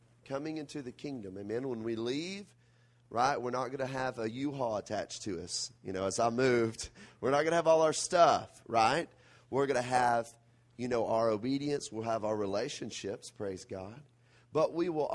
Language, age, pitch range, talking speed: Italian, 30-49, 110-135 Hz, 200 wpm